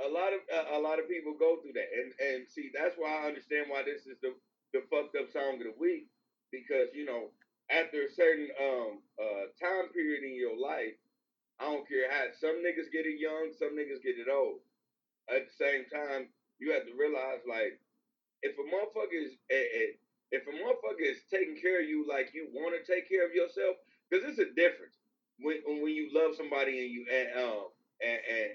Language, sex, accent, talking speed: English, male, American, 210 wpm